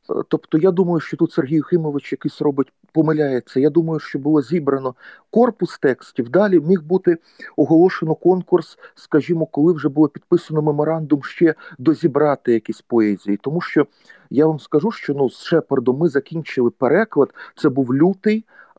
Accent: native